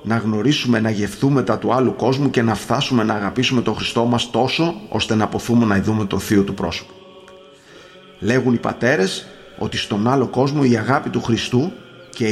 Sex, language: male, Greek